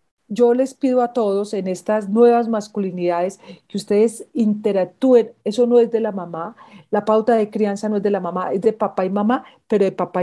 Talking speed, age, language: 205 wpm, 40-59, Spanish